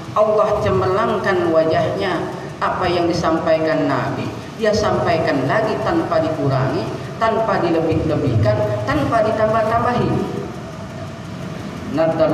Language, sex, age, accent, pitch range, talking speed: Indonesian, male, 40-59, native, 120-155 Hz, 85 wpm